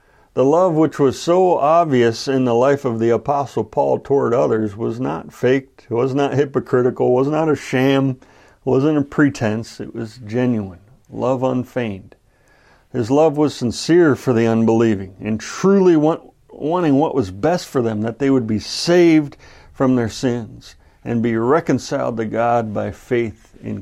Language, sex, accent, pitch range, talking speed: English, male, American, 110-140 Hz, 165 wpm